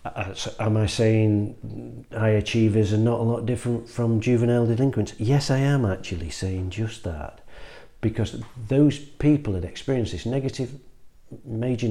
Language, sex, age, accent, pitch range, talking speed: English, male, 40-59, British, 95-115 Hz, 140 wpm